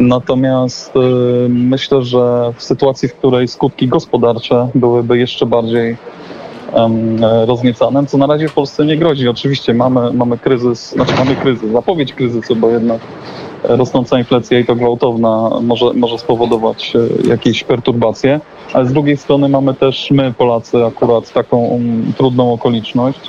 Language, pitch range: Polish, 120-135 Hz